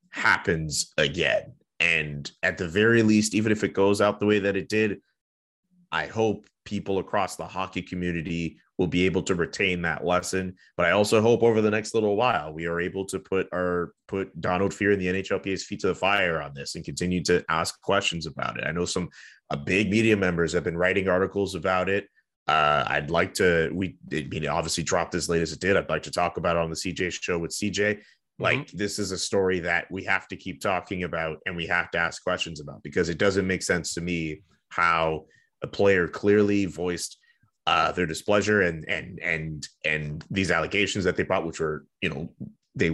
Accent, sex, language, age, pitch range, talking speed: American, male, English, 30-49, 85-100 Hz, 210 wpm